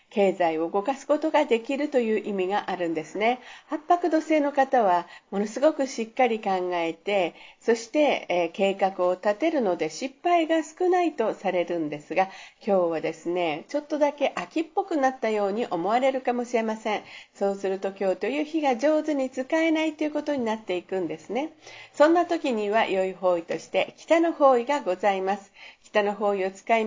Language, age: Japanese, 50-69